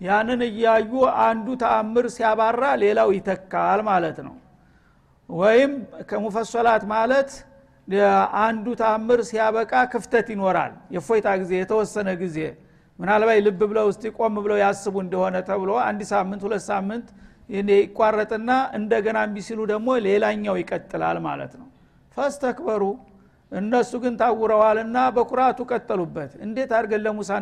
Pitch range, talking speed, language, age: 195-230 Hz, 95 wpm, Amharic, 50-69